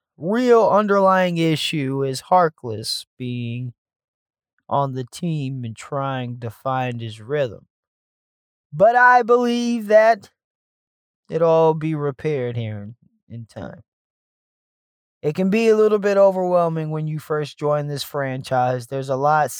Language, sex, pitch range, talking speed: English, male, 125-165 Hz, 130 wpm